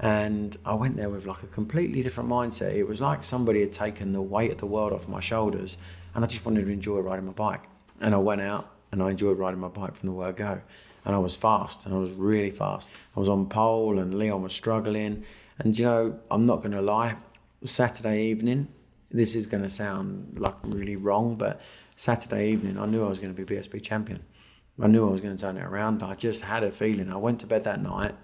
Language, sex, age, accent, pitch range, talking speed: English, male, 30-49, British, 95-110 Hz, 235 wpm